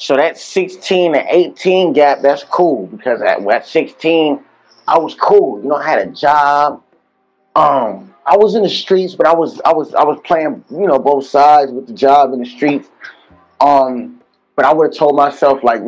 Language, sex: English, male